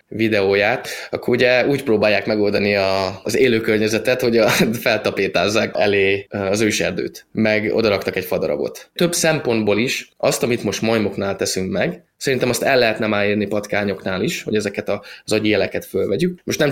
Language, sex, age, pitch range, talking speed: Hungarian, male, 20-39, 105-120 Hz, 160 wpm